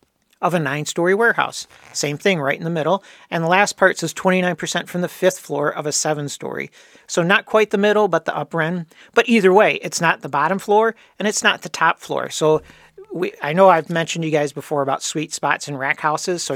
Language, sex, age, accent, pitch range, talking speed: English, male, 40-59, American, 150-190 Hz, 230 wpm